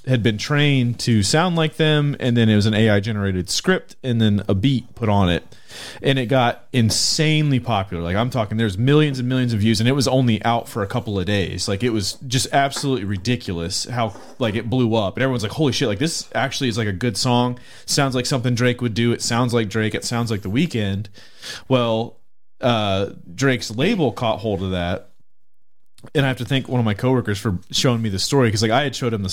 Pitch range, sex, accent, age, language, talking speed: 105-130 Hz, male, American, 30-49, English, 235 wpm